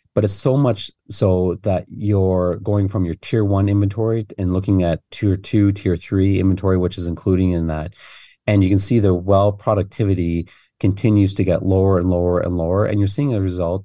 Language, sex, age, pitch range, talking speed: English, male, 30-49, 85-100 Hz, 200 wpm